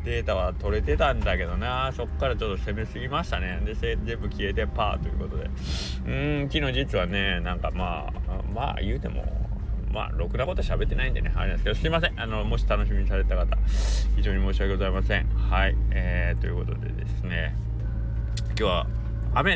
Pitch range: 65-100 Hz